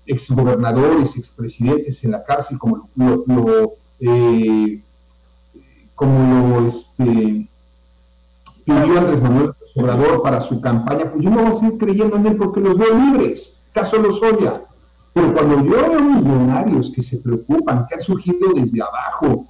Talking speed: 150 wpm